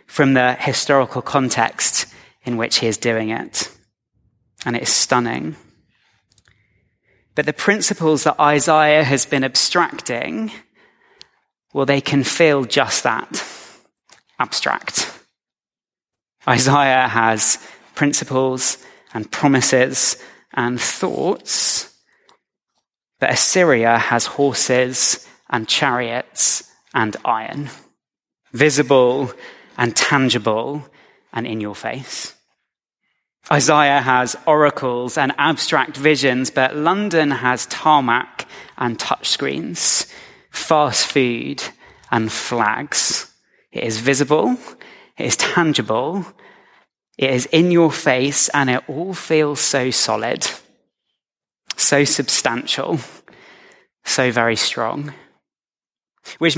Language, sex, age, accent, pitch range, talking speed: English, male, 20-39, British, 125-155 Hz, 95 wpm